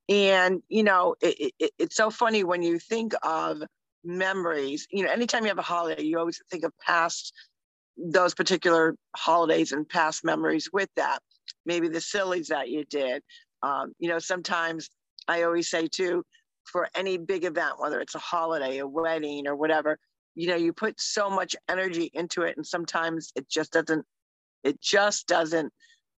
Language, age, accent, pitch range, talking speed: English, 50-69, American, 160-195 Hz, 170 wpm